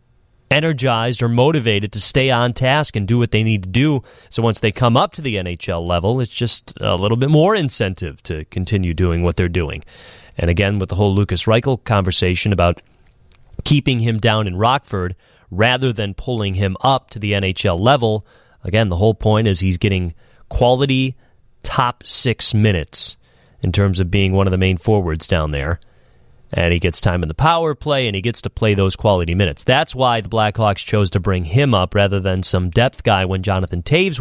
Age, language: 30-49, English